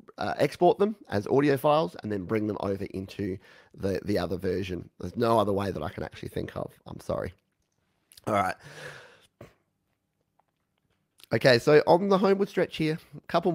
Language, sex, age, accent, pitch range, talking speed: English, male, 30-49, Australian, 95-135 Hz, 175 wpm